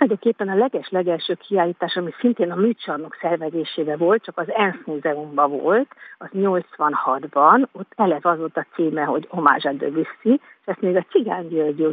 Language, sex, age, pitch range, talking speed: Hungarian, female, 50-69, 165-215 Hz, 160 wpm